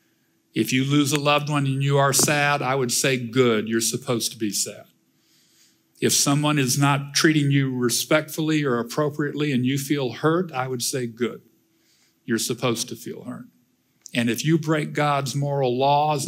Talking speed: 175 wpm